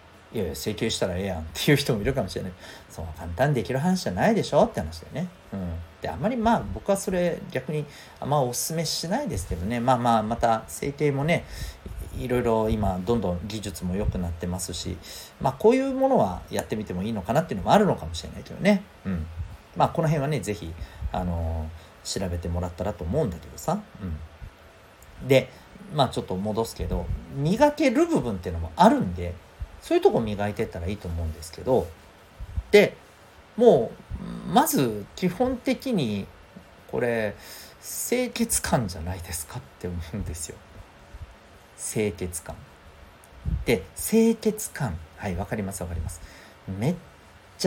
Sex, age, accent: male, 40-59, native